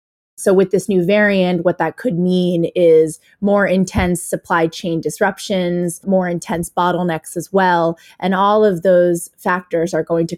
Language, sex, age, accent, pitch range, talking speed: English, female, 20-39, American, 110-185 Hz, 160 wpm